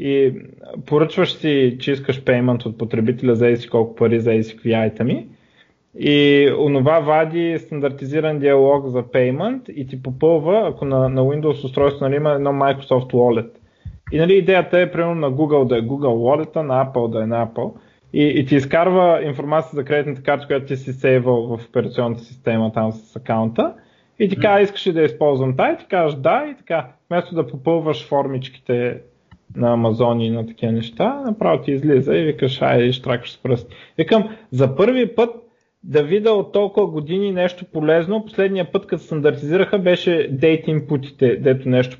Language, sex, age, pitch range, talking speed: Bulgarian, male, 20-39, 130-180 Hz, 175 wpm